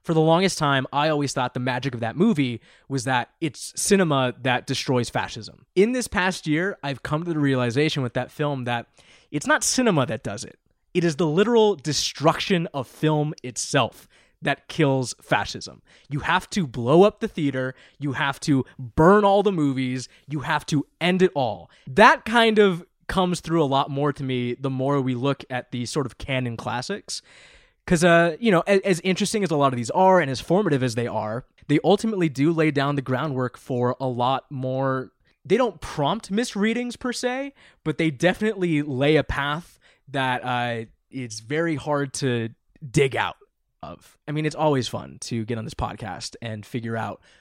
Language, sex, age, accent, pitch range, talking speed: English, male, 20-39, American, 130-180 Hz, 195 wpm